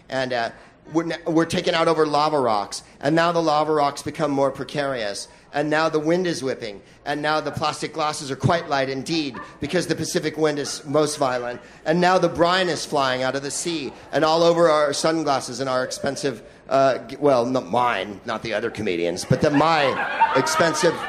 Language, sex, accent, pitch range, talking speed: English, male, American, 140-170 Hz, 195 wpm